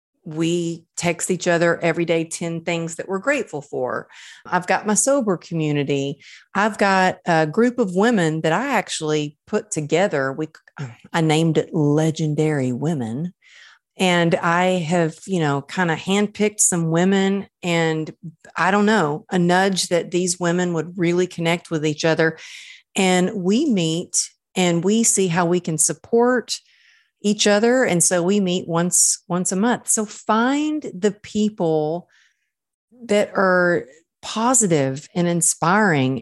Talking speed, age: 145 wpm, 40-59